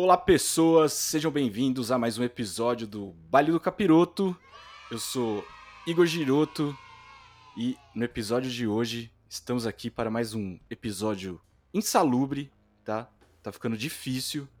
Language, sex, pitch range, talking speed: Portuguese, male, 105-130 Hz, 130 wpm